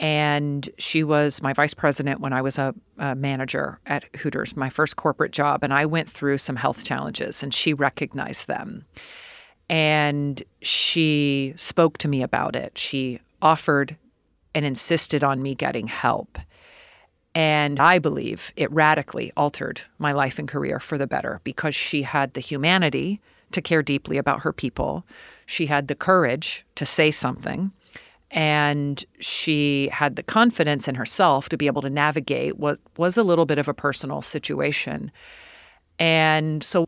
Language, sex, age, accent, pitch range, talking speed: English, female, 40-59, American, 140-165 Hz, 160 wpm